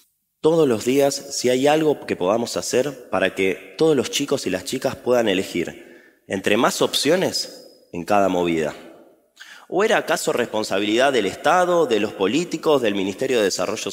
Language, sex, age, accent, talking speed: Spanish, male, 20-39, Argentinian, 165 wpm